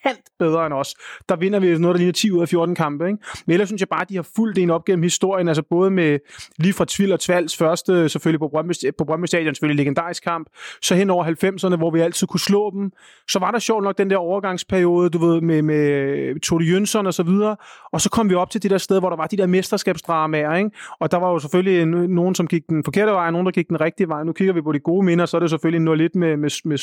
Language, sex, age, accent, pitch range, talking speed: Danish, male, 30-49, native, 165-195 Hz, 265 wpm